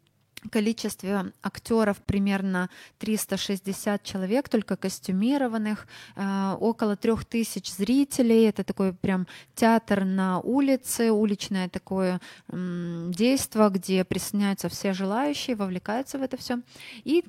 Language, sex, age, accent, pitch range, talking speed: Ukrainian, female, 20-39, native, 190-230 Hz, 100 wpm